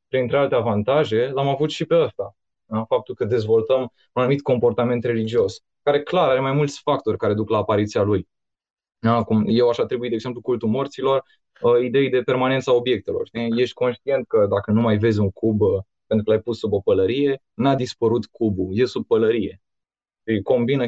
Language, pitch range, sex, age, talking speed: Romanian, 110-150 Hz, male, 20-39, 185 wpm